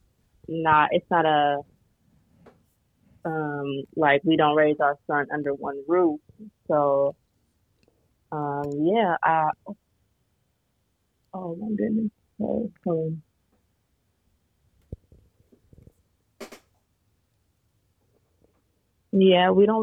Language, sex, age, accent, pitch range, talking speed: English, female, 30-49, American, 125-165 Hz, 75 wpm